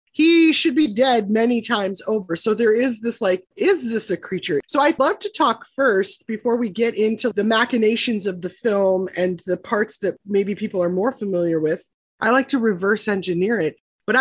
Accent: American